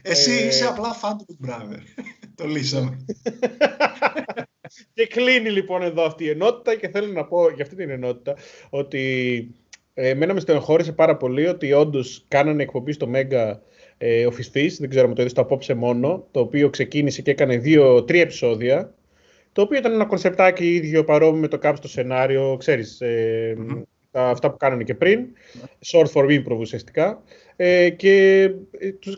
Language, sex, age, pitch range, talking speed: Greek, male, 30-49, 135-195 Hz, 150 wpm